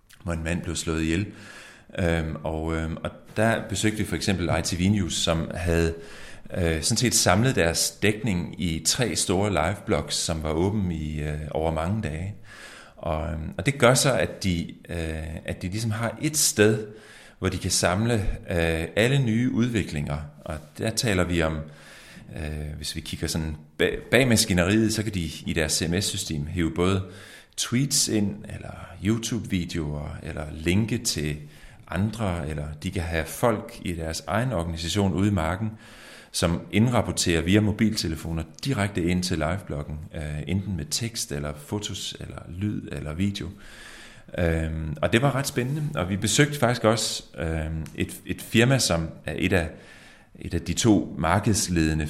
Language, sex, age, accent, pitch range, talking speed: Danish, male, 30-49, native, 80-105 Hz, 145 wpm